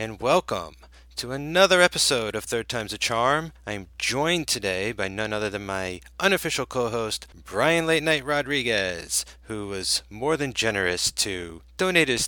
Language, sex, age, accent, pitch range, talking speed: English, male, 30-49, American, 100-140 Hz, 155 wpm